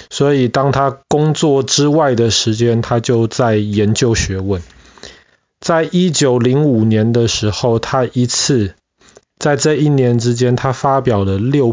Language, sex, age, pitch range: Chinese, male, 20-39, 110-135 Hz